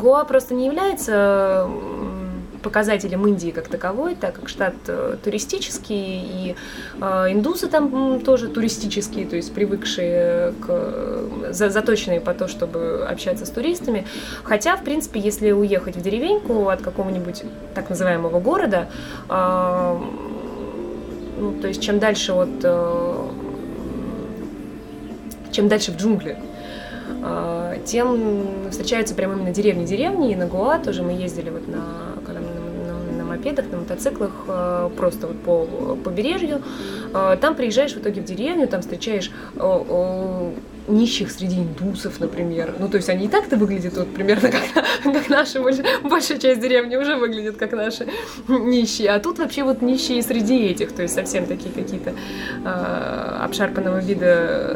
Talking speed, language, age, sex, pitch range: 135 wpm, Russian, 20-39, female, 185-255 Hz